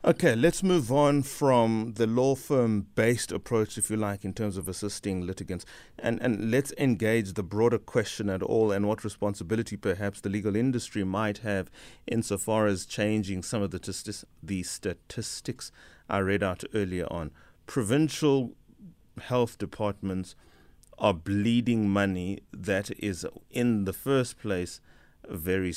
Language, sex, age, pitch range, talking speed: English, male, 30-49, 95-115 Hz, 145 wpm